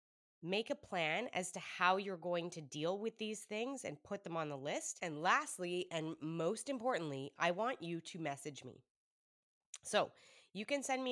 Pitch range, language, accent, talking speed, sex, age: 160-215 Hz, English, American, 190 wpm, female, 20-39